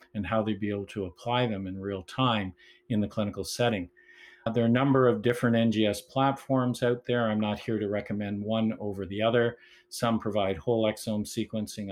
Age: 50-69